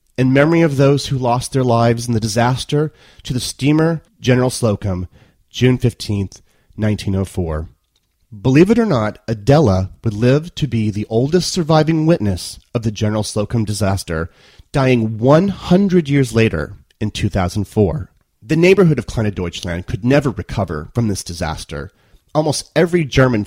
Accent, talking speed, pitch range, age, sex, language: American, 145 wpm, 100-140 Hz, 30-49, male, English